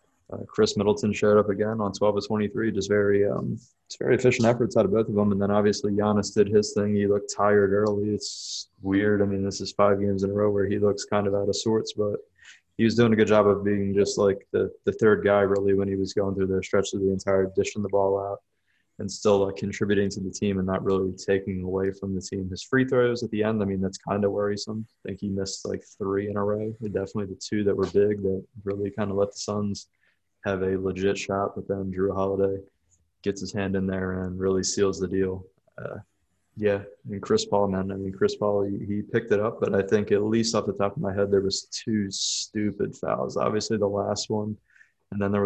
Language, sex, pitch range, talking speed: English, male, 95-105 Hz, 250 wpm